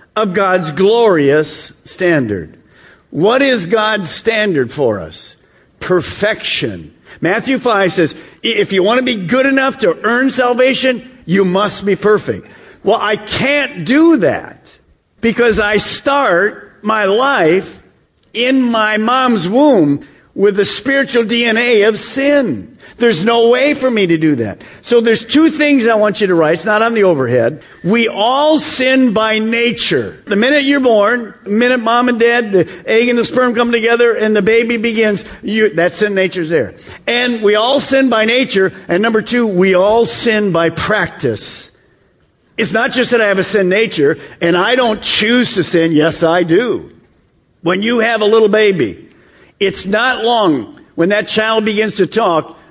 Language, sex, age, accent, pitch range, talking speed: English, male, 50-69, American, 195-245 Hz, 165 wpm